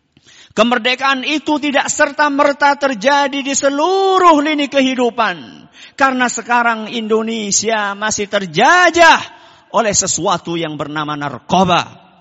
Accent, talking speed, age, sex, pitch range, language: native, 95 wpm, 50-69, male, 185-255 Hz, Indonesian